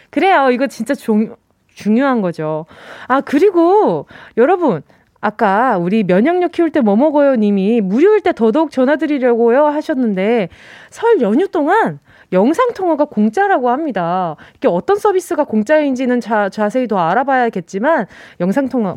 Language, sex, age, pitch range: Korean, female, 20-39, 215-310 Hz